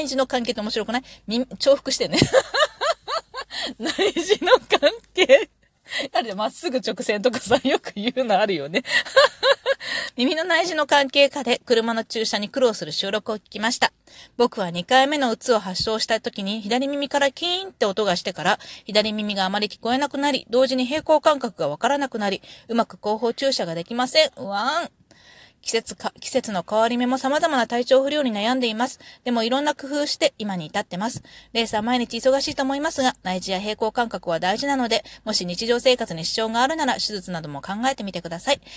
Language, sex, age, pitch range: Japanese, female, 30-49, 210-275 Hz